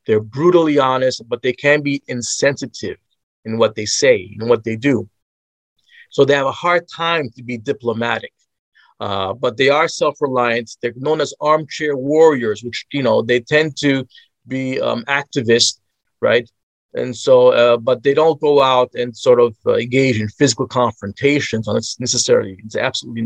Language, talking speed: English, 170 wpm